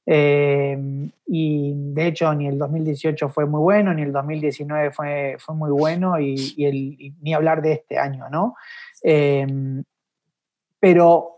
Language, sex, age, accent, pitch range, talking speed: Spanish, male, 30-49, Argentinian, 150-180 Hz, 155 wpm